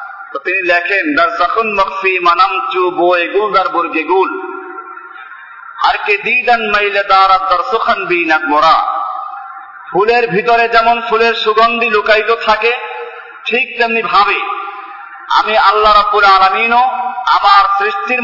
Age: 50-69